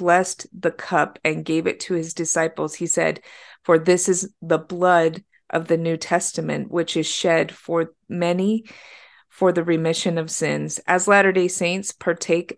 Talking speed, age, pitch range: 165 wpm, 30-49, 165-205 Hz